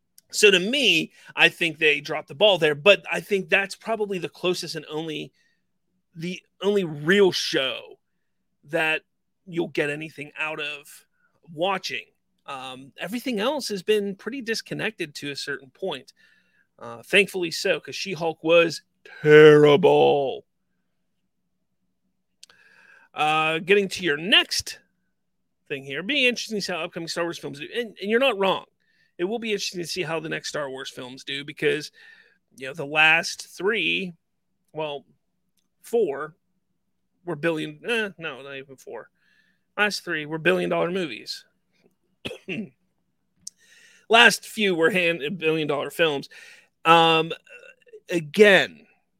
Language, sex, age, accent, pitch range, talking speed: English, male, 40-59, American, 155-210 Hz, 135 wpm